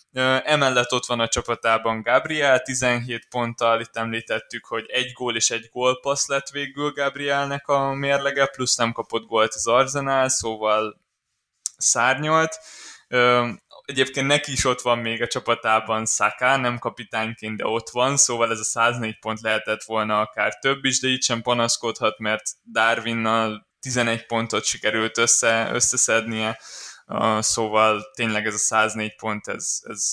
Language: Hungarian